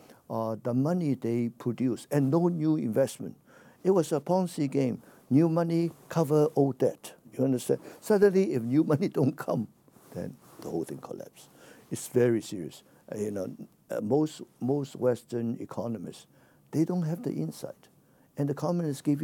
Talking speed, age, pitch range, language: 165 wpm, 60-79, 120-155 Hz, English